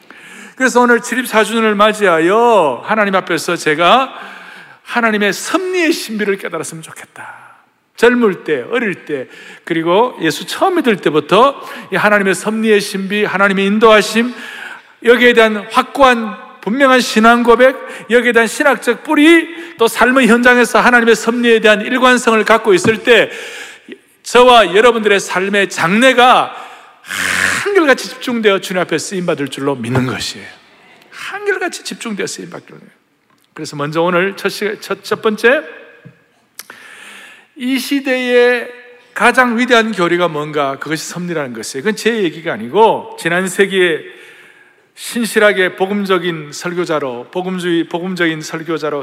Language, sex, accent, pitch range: Korean, male, native, 175-250 Hz